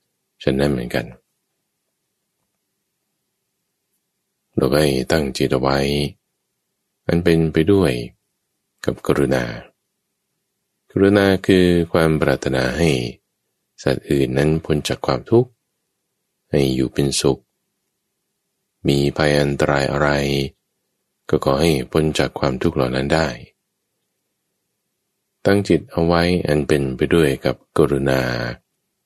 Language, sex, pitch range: English, male, 65-80 Hz